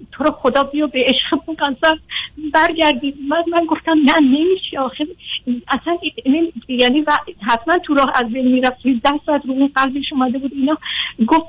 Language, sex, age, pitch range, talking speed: Persian, female, 50-69, 255-315 Hz, 160 wpm